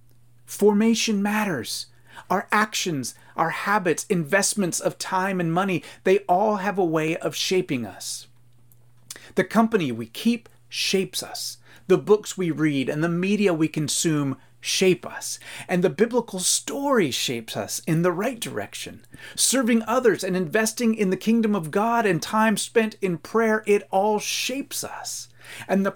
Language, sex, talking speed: English, male, 155 wpm